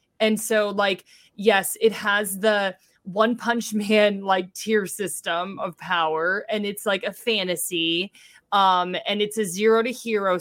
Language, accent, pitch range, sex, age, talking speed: English, American, 180-220 Hz, female, 20-39, 155 wpm